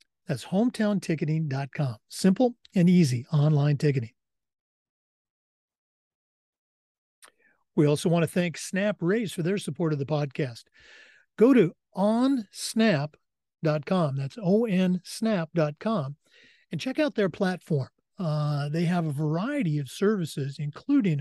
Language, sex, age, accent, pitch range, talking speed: English, male, 50-69, American, 150-195 Hz, 105 wpm